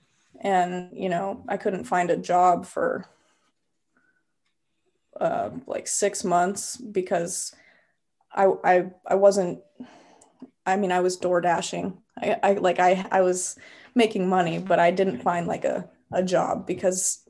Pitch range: 180-200 Hz